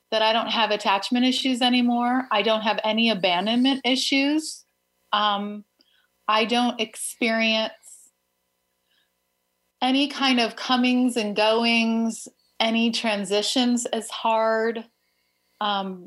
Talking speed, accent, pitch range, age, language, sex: 105 wpm, American, 195-235 Hz, 30-49, English, female